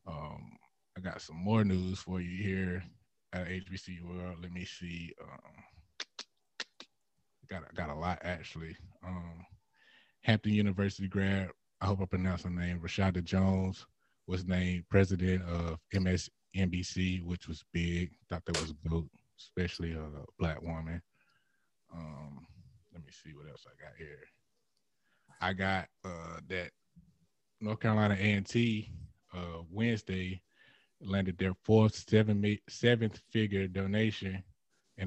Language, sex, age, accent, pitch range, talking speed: English, male, 20-39, American, 90-105 Hz, 135 wpm